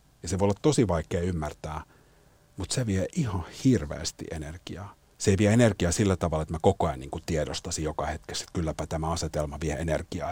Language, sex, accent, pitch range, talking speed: Finnish, male, native, 80-95 Hz, 200 wpm